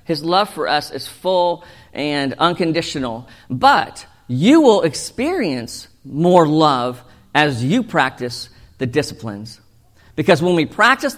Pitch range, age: 135-175 Hz, 50-69